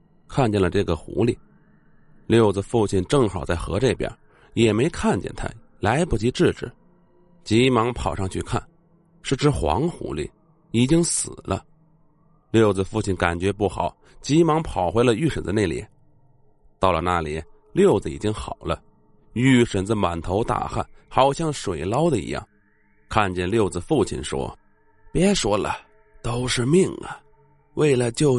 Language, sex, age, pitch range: Chinese, male, 30-49, 95-140 Hz